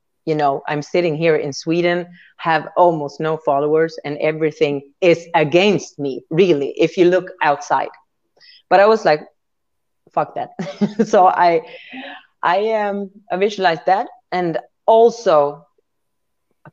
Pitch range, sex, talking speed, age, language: 155-210 Hz, female, 135 wpm, 30-49, English